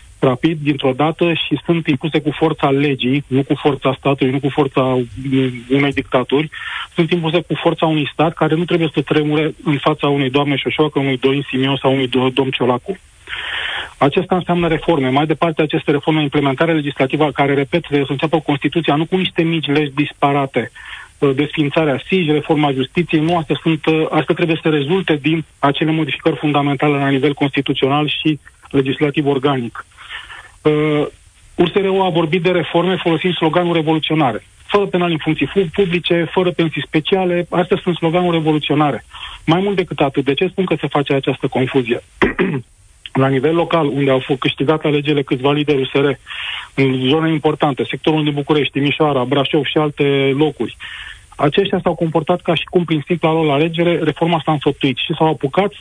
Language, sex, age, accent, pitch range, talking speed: Romanian, male, 40-59, native, 140-170 Hz, 165 wpm